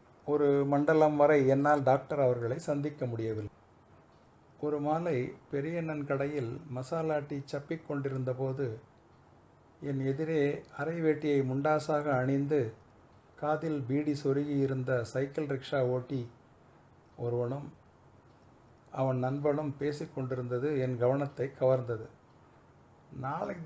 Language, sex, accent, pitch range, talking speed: Tamil, male, native, 130-155 Hz, 85 wpm